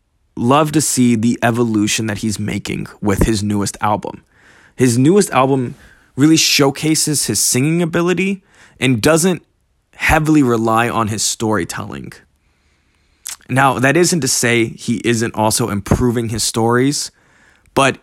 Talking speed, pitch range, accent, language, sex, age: 130 wpm, 110-145 Hz, American, English, male, 20-39